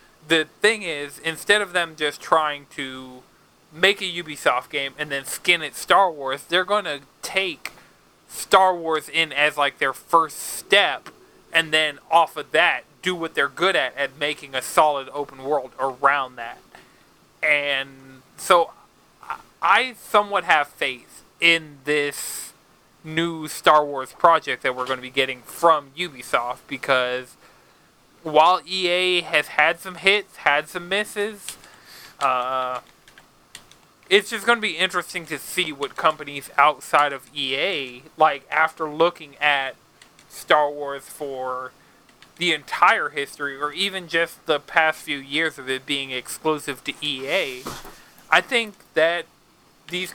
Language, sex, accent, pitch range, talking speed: English, male, American, 140-180 Hz, 145 wpm